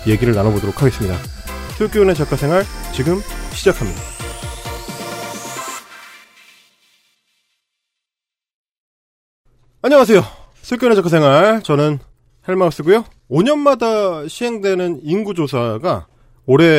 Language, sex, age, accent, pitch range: Korean, male, 30-49, native, 130-205 Hz